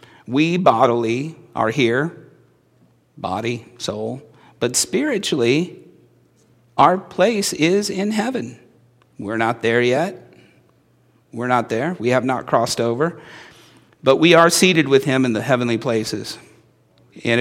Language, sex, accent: English, male, American